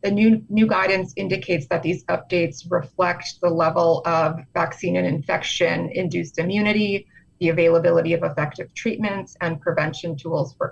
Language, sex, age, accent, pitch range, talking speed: English, female, 30-49, American, 160-185 Hz, 140 wpm